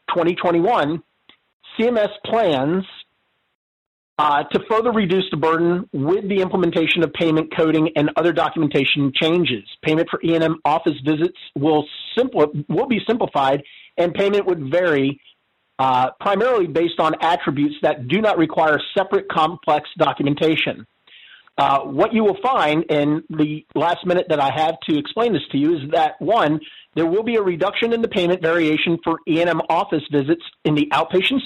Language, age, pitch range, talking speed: English, 40-59, 150-185 Hz, 155 wpm